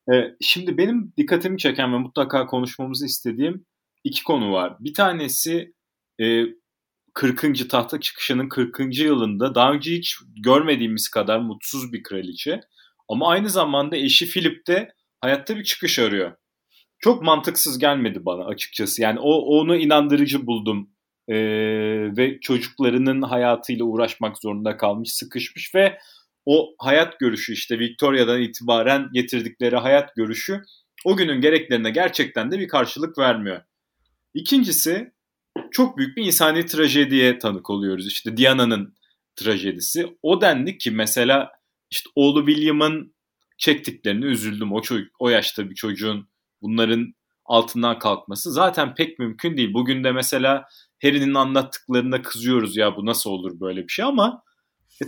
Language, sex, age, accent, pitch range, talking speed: Turkish, male, 40-59, native, 115-165 Hz, 130 wpm